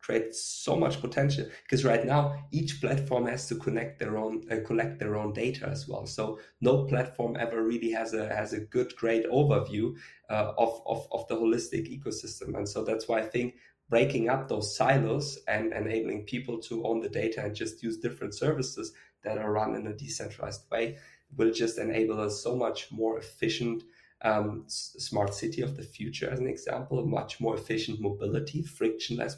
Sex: male